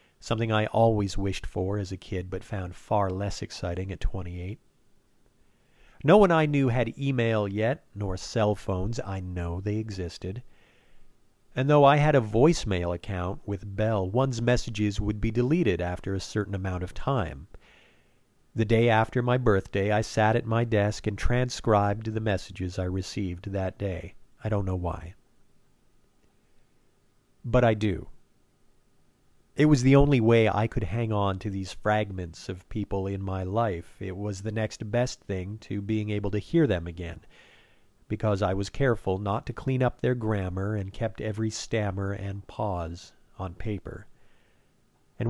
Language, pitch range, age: English, 95-115 Hz, 50-69